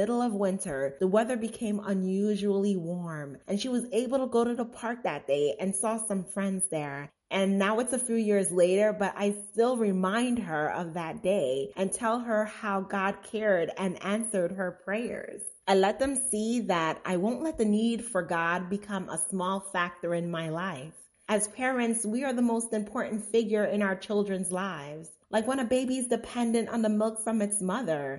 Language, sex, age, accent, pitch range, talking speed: English, female, 30-49, American, 185-230 Hz, 195 wpm